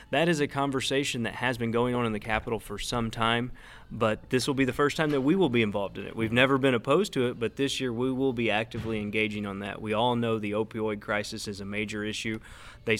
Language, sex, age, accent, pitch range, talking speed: English, male, 30-49, American, 110-140 Hz, 260 wpm